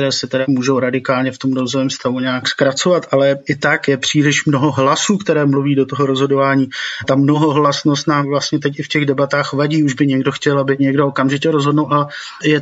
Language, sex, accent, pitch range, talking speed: Czech, male, native, 140-170 Hz, 210 wpm